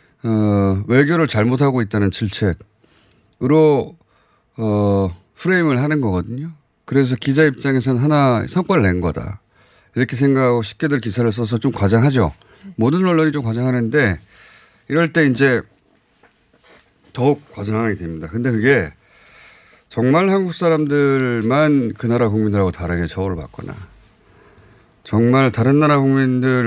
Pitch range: 95-135 Hz